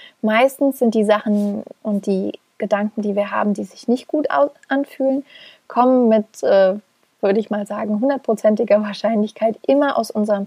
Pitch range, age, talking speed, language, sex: 210-250 Hz, 20-39, 150 wpm, German, female